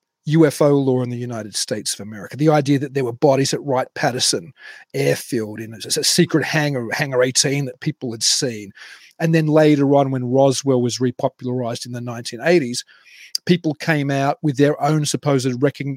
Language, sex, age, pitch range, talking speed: English, male, 40-59, 125-150 Hz, 170 wpm